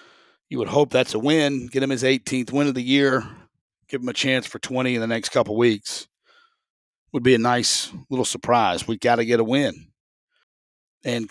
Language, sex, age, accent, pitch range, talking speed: English, male, 50-69, American, 120-150 Hz, 205 wpm